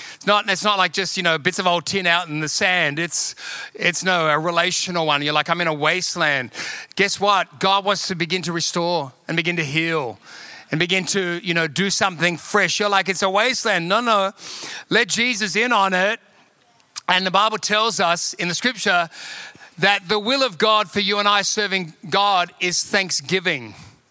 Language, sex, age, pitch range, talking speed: English, male, 40-59, 175-210 Hz, 200 wpm